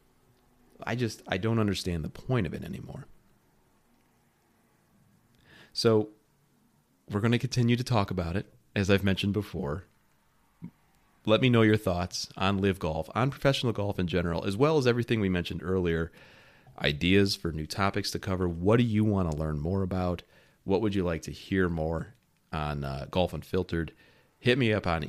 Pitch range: 85-110 Hz